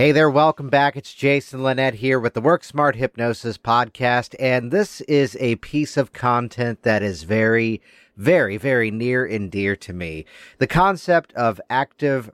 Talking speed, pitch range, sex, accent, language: 170 wpm, 105-135 Hz, male, American, English